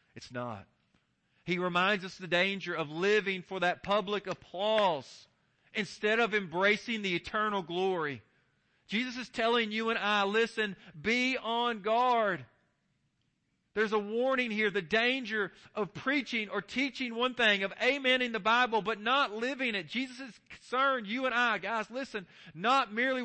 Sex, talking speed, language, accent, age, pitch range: male, 155 wpm, English, American, 40-59, 160-225 Hz